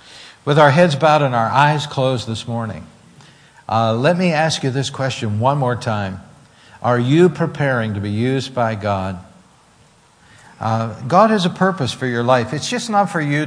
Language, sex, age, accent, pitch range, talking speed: English, male, 60-79, American, 110-155 Hz, 185 wpm